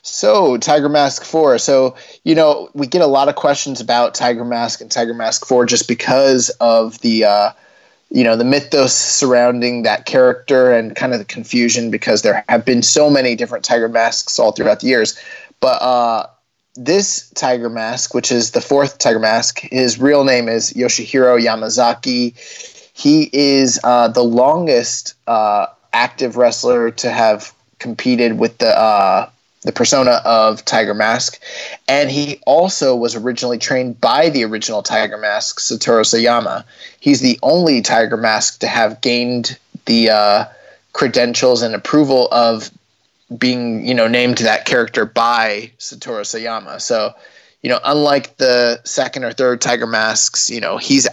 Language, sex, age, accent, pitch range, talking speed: English, male, 30-49, American, 115-140 Hz, 160 wpm